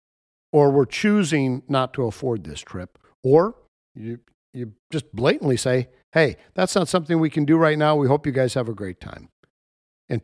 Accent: American